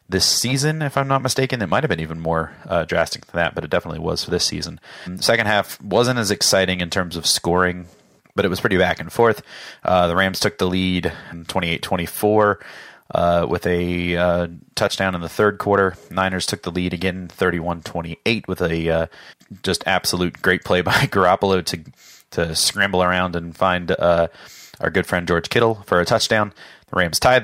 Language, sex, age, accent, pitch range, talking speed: English, male, 30-49, American, 85-105 Hz, 195 wpm